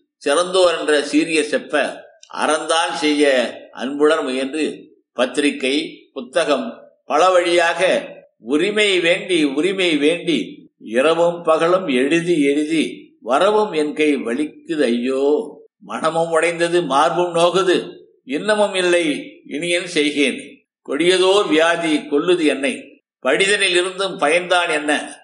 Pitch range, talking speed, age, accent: 155-200 Hz, 95 wpm, 60-79, native